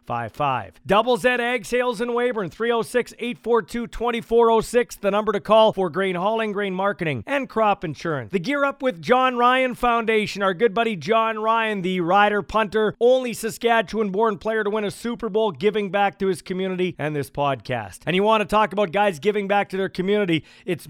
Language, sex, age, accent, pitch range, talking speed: English, male, 40-59, American, 185-235 Hz, 185 wpm